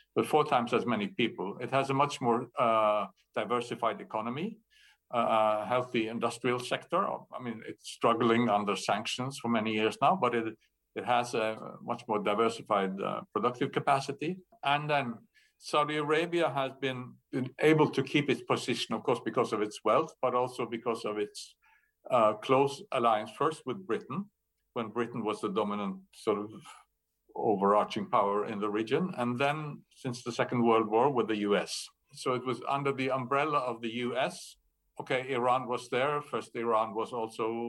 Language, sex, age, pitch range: English, male, 60-79, 115-145 Hz